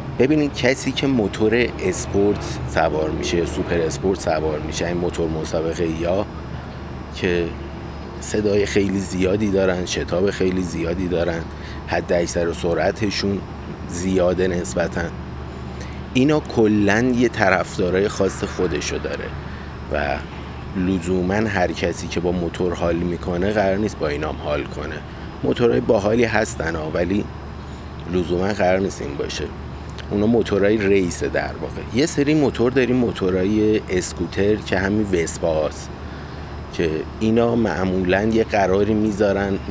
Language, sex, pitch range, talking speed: Persian, male, 80-100 Hz, 120 wpm